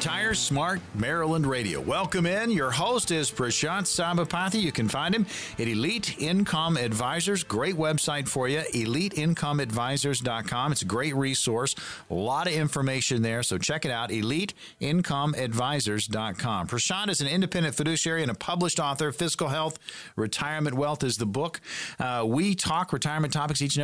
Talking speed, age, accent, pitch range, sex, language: 155 wpm, 50-69, American, 125-165 Hz, male, English